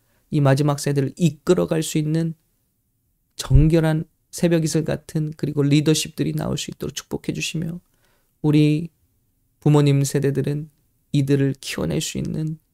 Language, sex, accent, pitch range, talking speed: English, male, Korean, 135-160 Hz, 110 wpm